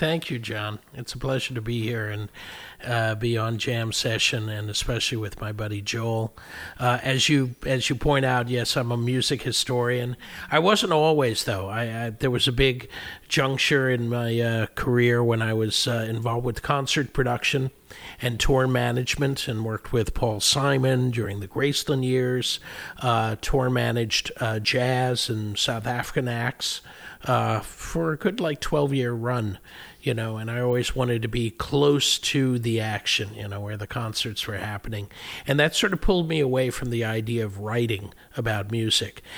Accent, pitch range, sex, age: American, 115-135 Hz, male, 50-69